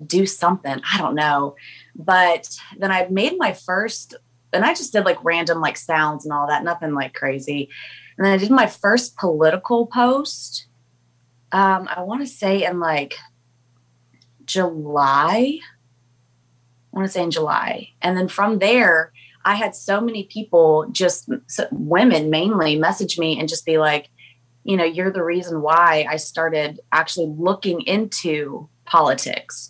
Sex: female